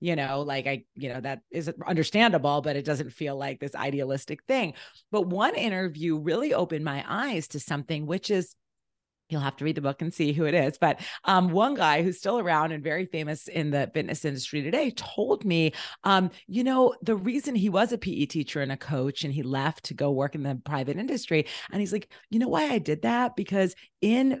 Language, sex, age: English, female, 30-49